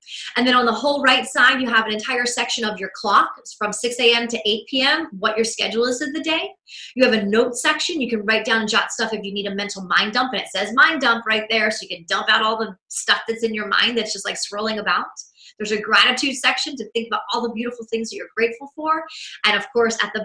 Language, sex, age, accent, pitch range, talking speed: English, female, 30-49, American, 205-260 Hz, 270 wpm